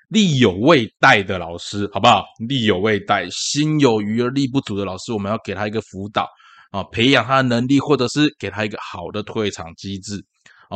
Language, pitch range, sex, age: Chinese, 100-130 Hz, male, 20-39